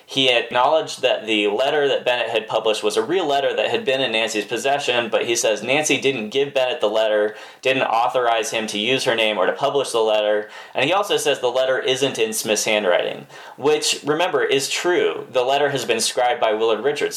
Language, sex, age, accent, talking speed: English, male, 20-39, American, 215 wpm